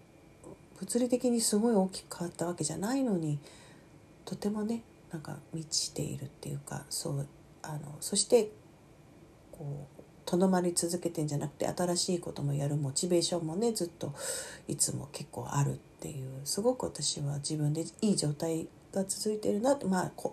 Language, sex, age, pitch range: Japanese, female, 40-59, 160-215 Hz